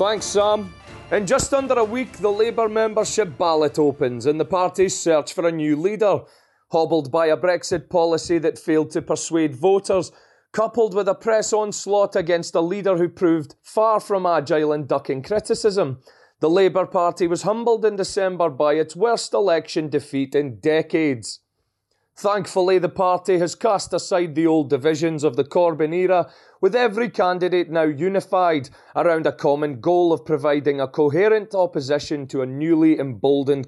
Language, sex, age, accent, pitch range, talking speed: English, male, 30-49, British, 150-190 Hz, 160 wpm